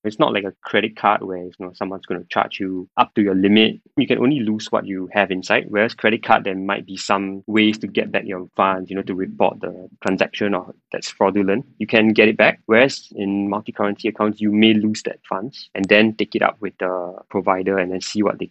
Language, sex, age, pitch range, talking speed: English, male, 20-39, 100-115 Hz, 245 wpm